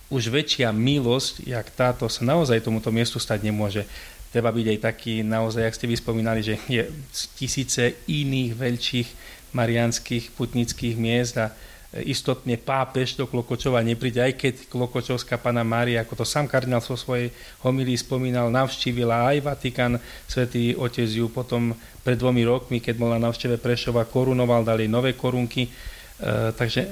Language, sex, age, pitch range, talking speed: Slovak, male, 40-59, 115-130 Hz, 150 wpm